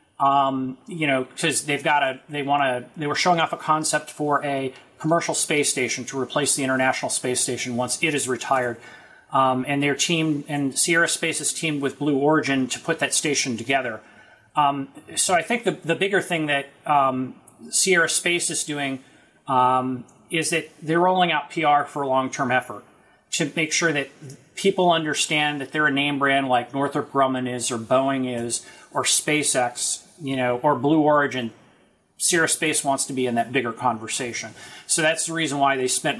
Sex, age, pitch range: male, 30-49, 130-155 Hz